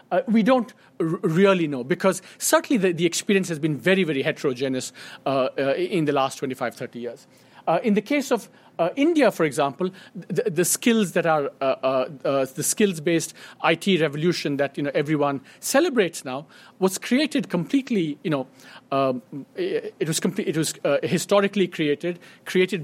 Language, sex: English, male